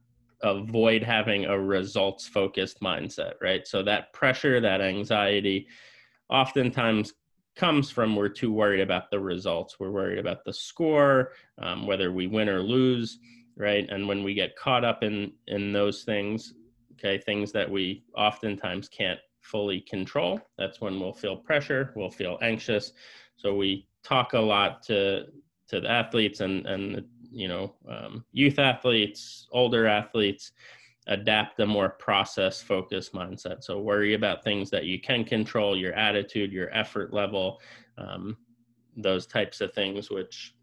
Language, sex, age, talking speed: English, male, 20-39, 150 wpm